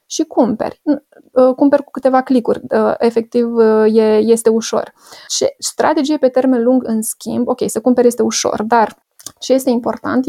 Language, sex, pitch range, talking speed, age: Romanian, female, 225-260 Hz, 165 wpm, 20-39